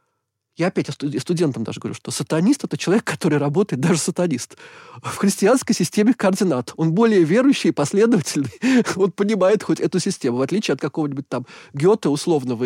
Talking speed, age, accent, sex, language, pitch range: 170 wpm, 20-39, native, male, Russian, 145-200 Hz